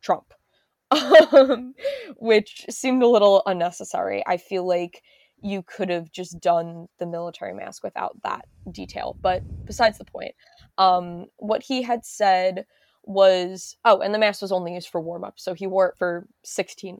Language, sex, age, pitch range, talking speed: English, female, 20-39, 180-210 Hz, 165 wpm